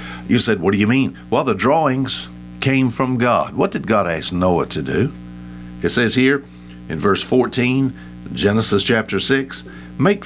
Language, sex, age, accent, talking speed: English, male, 60-79, American, 170 wpm